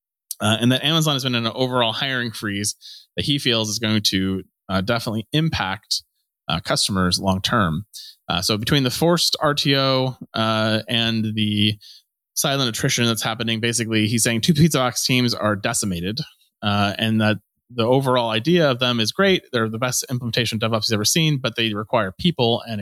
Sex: male